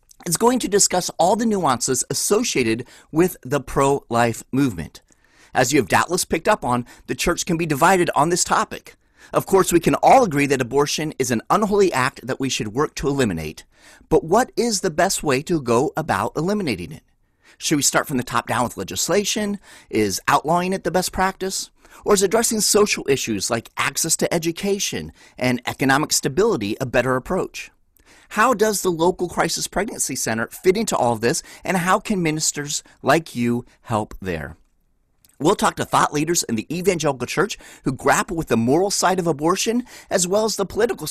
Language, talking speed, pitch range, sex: English, 185 wpm, 125-190 Hz, male